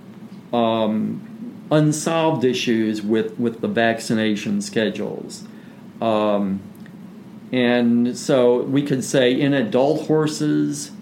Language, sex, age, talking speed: English, male, 50-69, 95 wpm